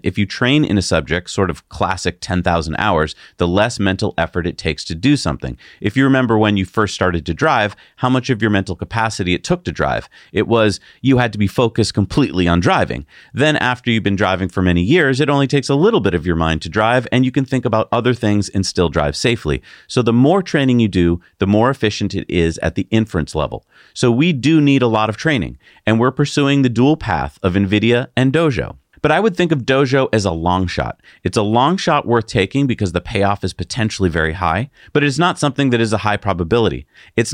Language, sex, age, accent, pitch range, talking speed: English, male, 40-59, American, 95-130 Hz, 235 wpm